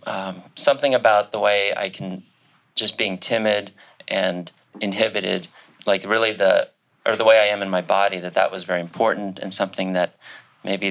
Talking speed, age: 175 wpm, 30-49